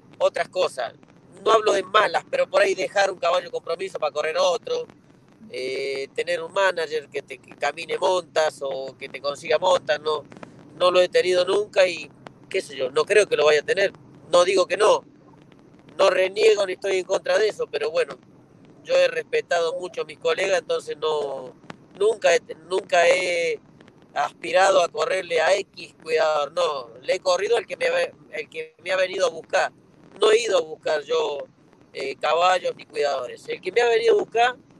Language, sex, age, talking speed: Spanish, male, 40-59, 190 wpm